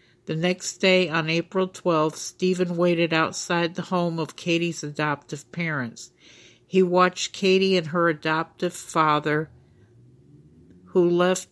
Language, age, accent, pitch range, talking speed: English, 50-69, American, 155-180 Hz, 125 wpm